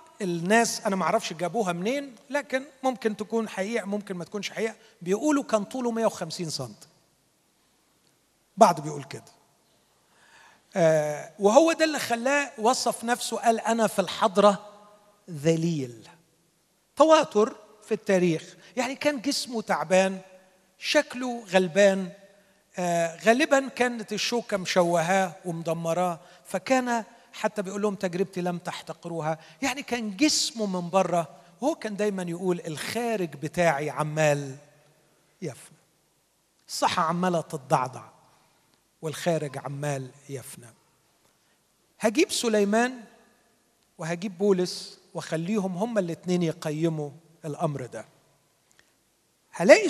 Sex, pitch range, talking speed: male, 165-225 Hz, 100 wpm